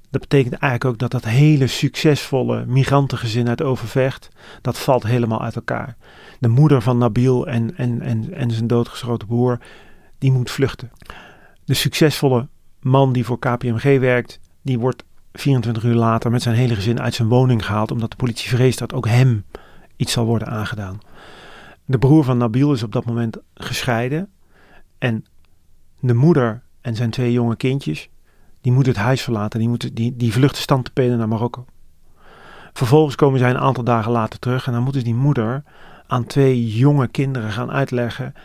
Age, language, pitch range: 40-59, Dutch, 115-135 Hz